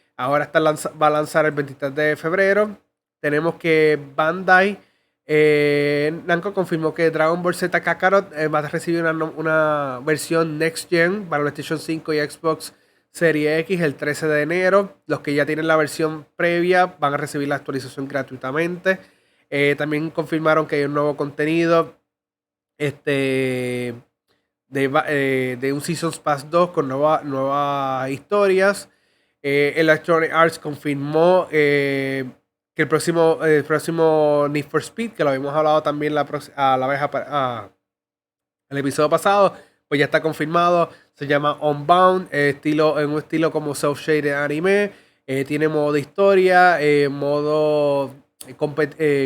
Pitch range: 145-165 Hz